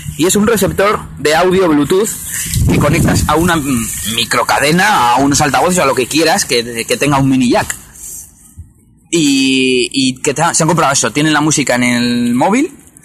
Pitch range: 120-160 Hz